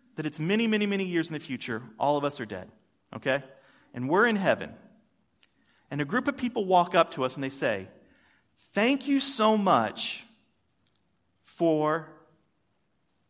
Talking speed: 160 wpm